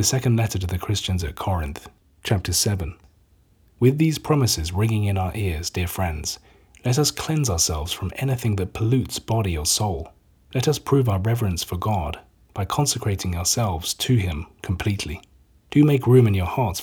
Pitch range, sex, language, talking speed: 95-125 Hz, male, English, 175 wpm